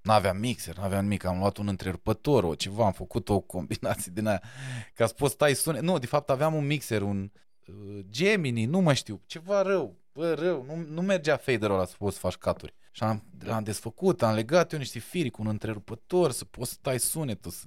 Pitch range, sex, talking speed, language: 100-150 Hz, male, 215 wpm, Romanian